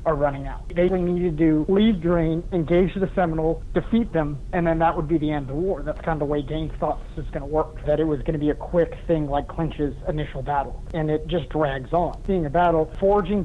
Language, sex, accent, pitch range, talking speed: English, male, American, 155-175 Hz, 265 wpm